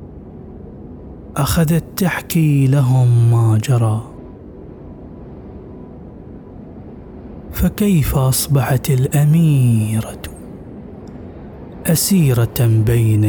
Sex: male